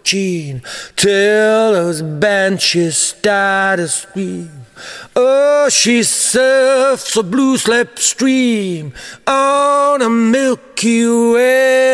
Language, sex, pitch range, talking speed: English, male, 170-225 Hz, 80 wpm